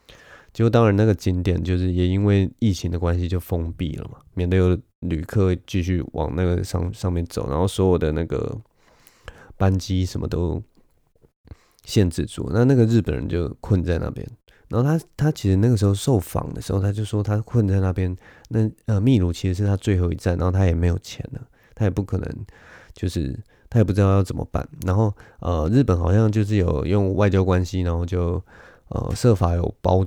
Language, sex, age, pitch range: Chinese, male, 20-39, 90-105 Hz